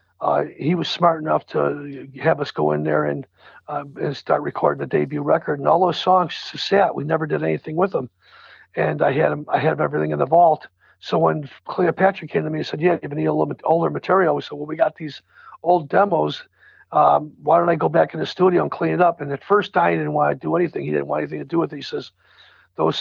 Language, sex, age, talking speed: English, male, 50-69, 245 wpm